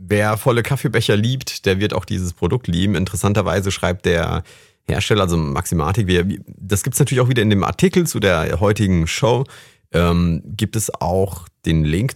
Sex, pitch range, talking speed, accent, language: male, 90-110 Hz, 175 wpm, German, German